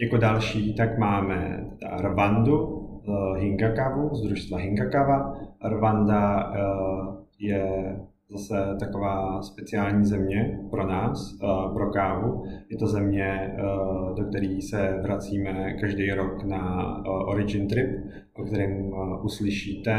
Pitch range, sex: 95-105 Hz, male